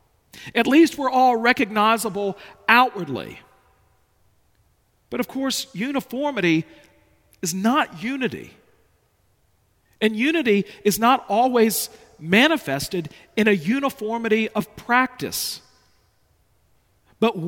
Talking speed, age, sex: 85 wpm, 50-69, male